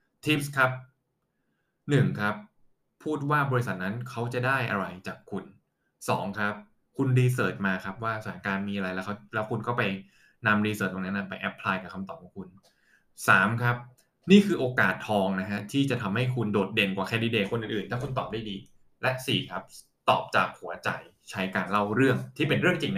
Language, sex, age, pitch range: Thai, male, 20-39, 105-140 Hz